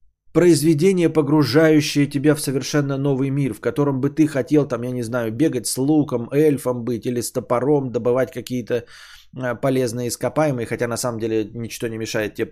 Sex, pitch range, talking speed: male, 125-190 Hz, 175 wpm